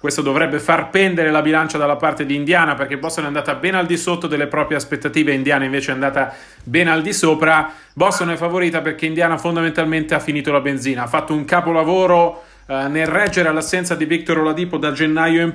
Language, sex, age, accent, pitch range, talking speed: Italian, male, 30-49, native, 155-190 Hz, 200 wpm